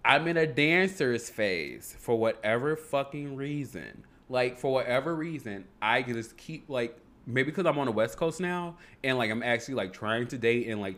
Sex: male